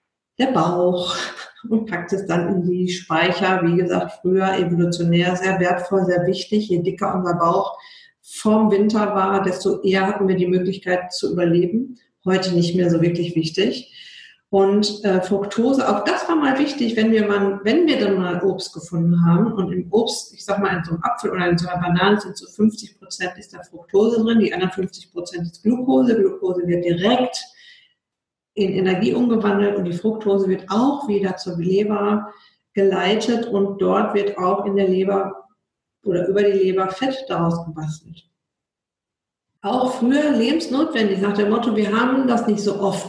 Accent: German